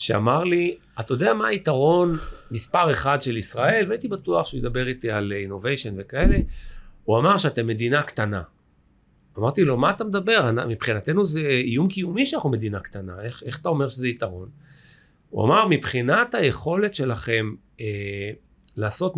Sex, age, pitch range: male, 40-59, 115-175 Hz